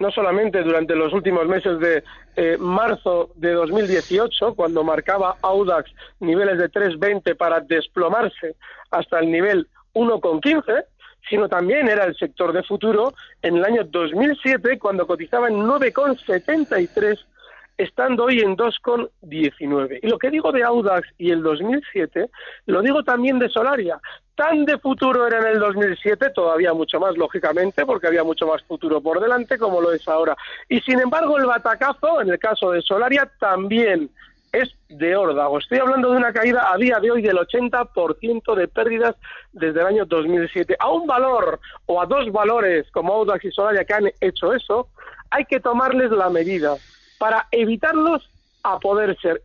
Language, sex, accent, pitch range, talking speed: Spanish, male, Spanish, 175-250 Hz, 165 wpm